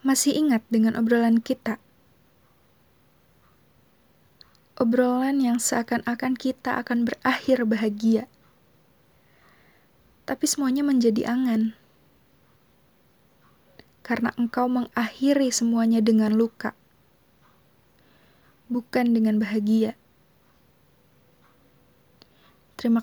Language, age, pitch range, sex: Indonesian, 20-39, 225-255 Hz, female